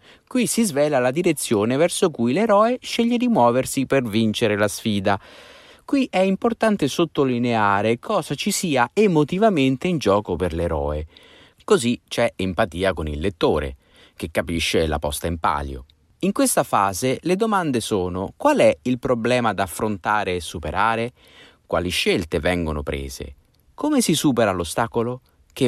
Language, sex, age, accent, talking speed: Italian, male, 30-49, native, 145 wpm